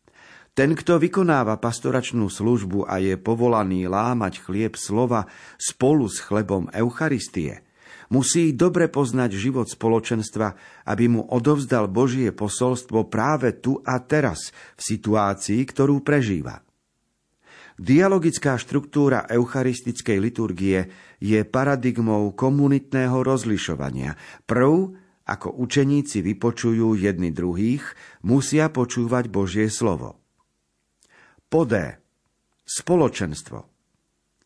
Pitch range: 105-135 Hz